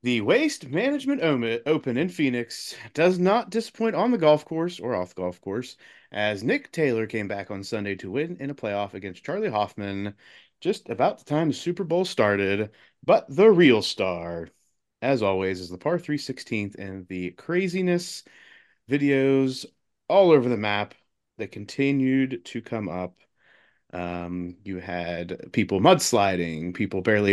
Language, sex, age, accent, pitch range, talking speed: English, male, 30-49, American, 95-130 Hz, 155 wpm